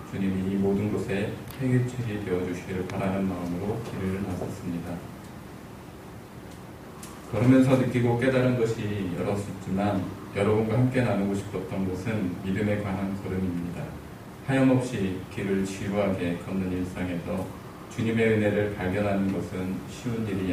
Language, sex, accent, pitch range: Korean, male, native, 95-105 Hz